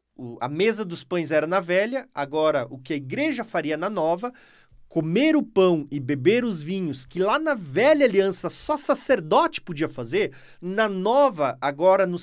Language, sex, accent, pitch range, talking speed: Portuguese, male, Brazilian, 160-220 Hz, 170 wpm